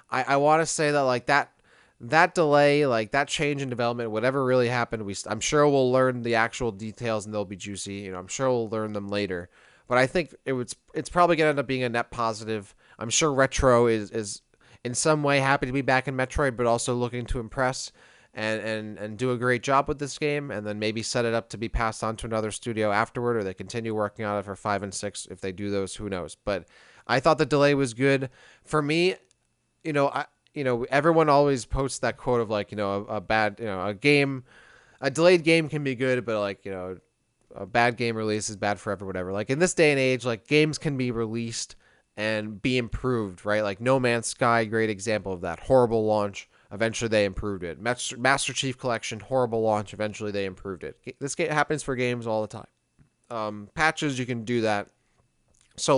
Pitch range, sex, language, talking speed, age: 105-135 Hz, male, English, 225 wpm, 20-39